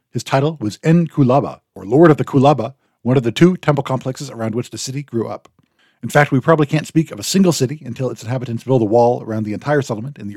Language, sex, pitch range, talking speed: English, male, 115-145 Hz, 250 wpm